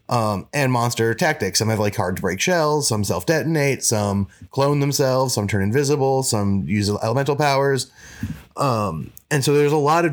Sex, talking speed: male, 185 wpm